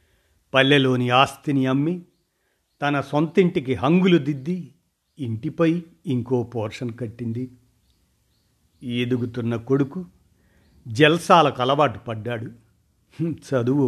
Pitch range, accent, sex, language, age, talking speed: 110-145 Hz, native, male, Telugu, 50-69, 75 wpm